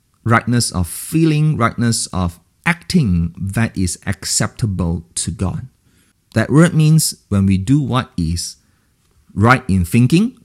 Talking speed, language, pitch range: 120 wpm, English, 90-130 Hz